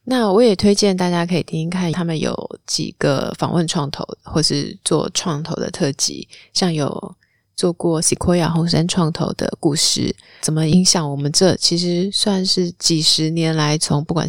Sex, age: female, 20-39